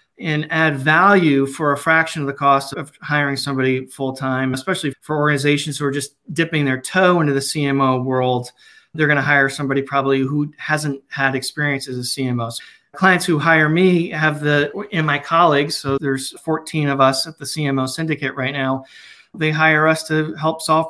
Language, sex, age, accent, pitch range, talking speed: English, male, 40-59, American, 135-160 Hz, 185 wpm